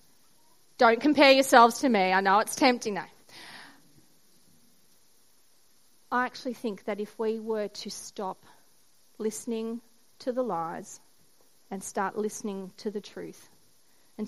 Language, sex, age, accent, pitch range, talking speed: English, female, 40-59, Australian, 220-285 Hz, 130 wpm